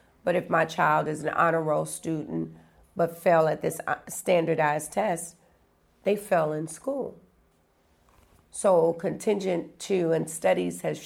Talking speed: 135 wpm